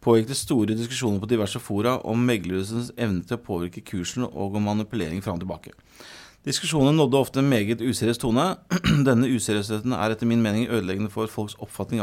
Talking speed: 180 wpm